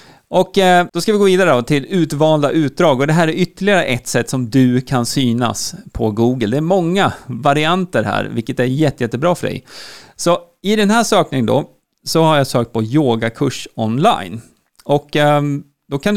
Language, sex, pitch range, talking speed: Swedish, male, 125-185 Hz, 185 wpm